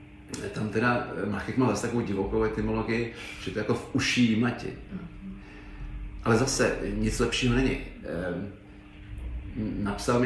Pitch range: 100-120 Hz